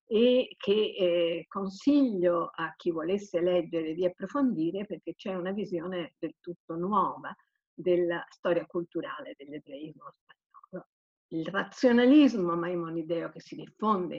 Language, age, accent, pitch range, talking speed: Italian, 50-69, native, 175-240 Hz, 120 wpm